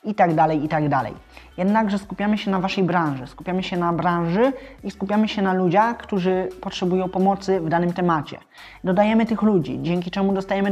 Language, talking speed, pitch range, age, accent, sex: Polish, 185 wpm, 175-205 Hz, 20-39, native, male